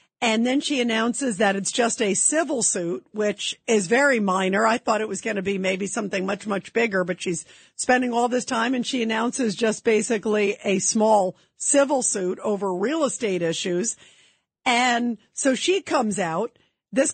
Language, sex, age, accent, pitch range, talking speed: English, female, 50-69, American, 220-280 Hz, 180 wpm